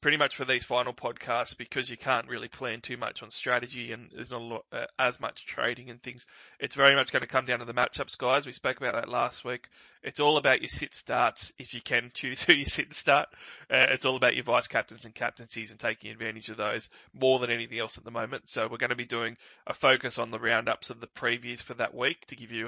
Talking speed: 250 wpm